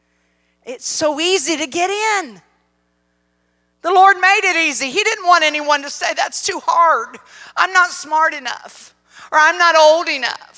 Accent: American